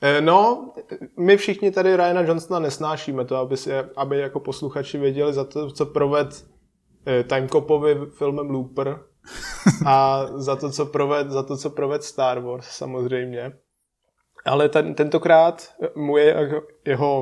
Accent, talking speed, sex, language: native, 130 wpm, male, Czech